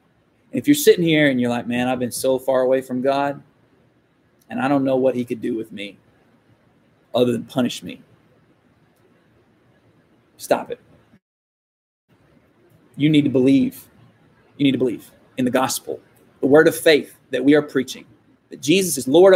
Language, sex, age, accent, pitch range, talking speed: English, male, 30-49, American, 125-185 Hz, 165 wpm